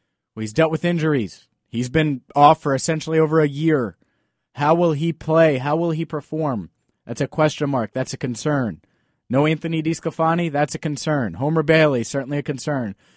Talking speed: 175 wpm